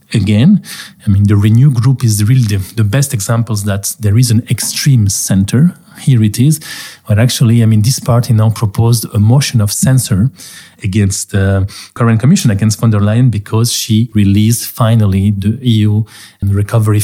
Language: Hungarian